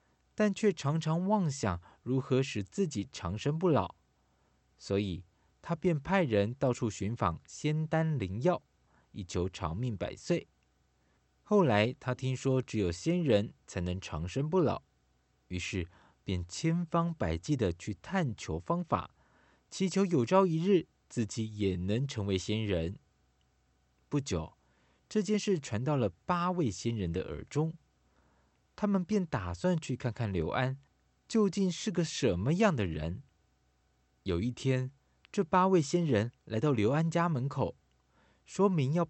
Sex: male